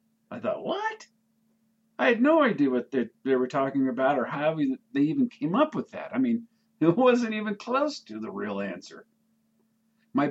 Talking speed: 185 wpm